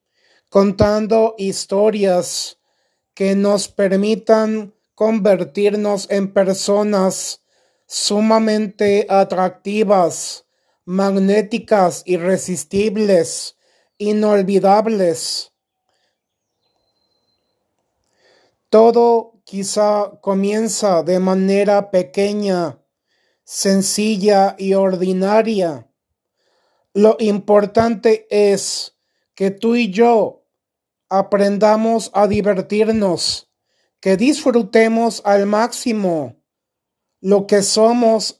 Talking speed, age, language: 60 wpm, 30-49, Spanish